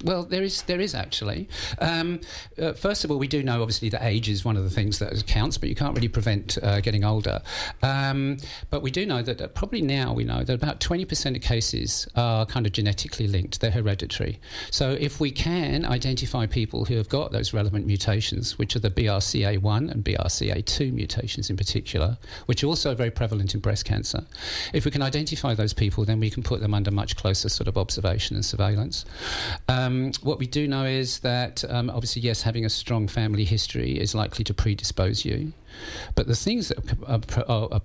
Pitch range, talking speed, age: 100-130 Hz, 205 wpm, 50-69